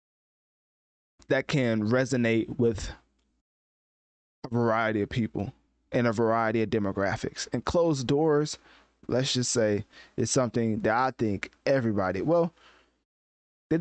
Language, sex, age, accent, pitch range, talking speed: English, male, 20-39, American, 110-140 Hz, 115 wpm